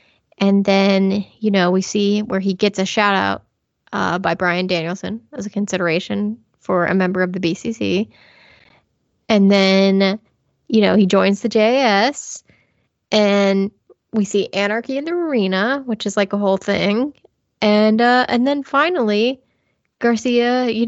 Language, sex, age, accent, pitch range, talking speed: English, female, 10-29, American, 195-230 Hz, 155 wpm